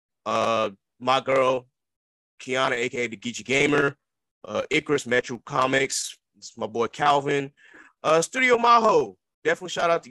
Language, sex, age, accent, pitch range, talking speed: English, male, 30-49, American, 110-140 Hz, 140 wpm